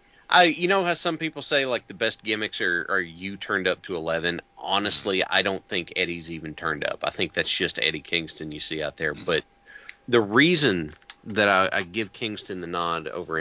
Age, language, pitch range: 30-49, English, 90-145 Hz